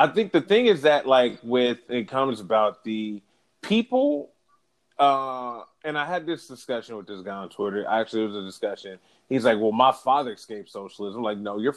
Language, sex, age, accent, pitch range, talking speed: English, male, 30-49, American, 120-180 Hz, 205 wpm